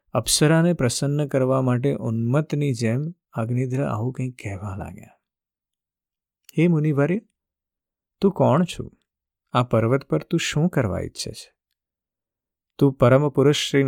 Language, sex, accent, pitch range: Gujarati, male, native, 115-155 Hz